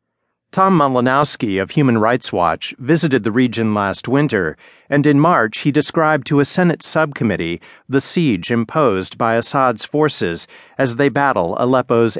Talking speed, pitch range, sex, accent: 150 wpm, 115-145 Hz, male, American